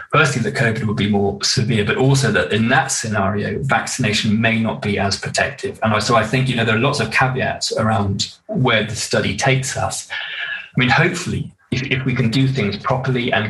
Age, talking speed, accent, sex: 20-39, 210 wpm, British, male